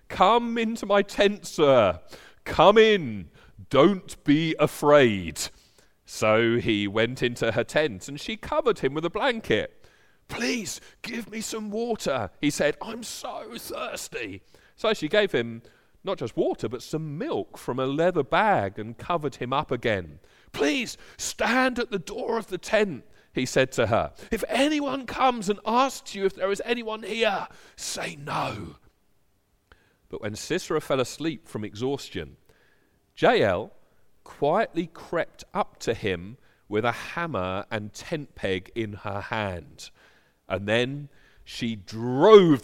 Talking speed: 145 wpm